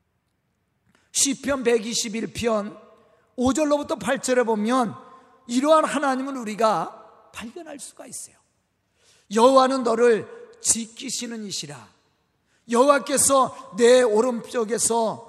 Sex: male